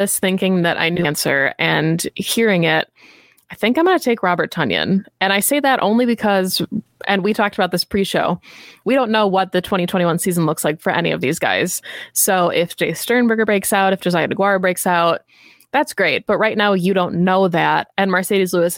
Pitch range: 170-205 Hz